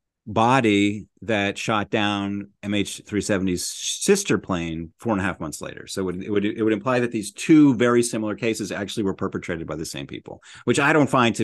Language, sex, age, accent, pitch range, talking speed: English, male, 30-49, American, 100-125 Hz, 205 wpm